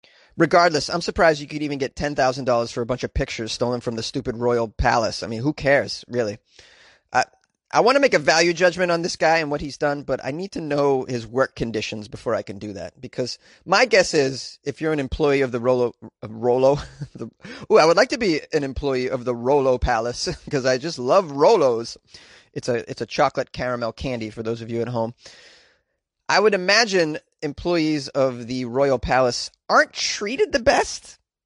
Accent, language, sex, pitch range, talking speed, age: American, English, male, 125-170 Hz, 205 wpm, 30-49